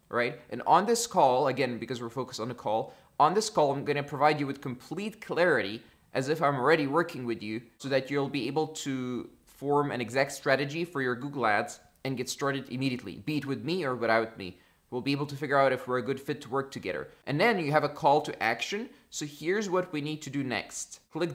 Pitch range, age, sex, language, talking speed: 120-150 Hz, 20-39, male, English, 240 wpm